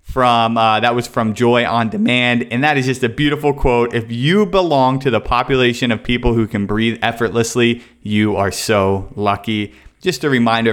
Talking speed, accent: 190 wpm, American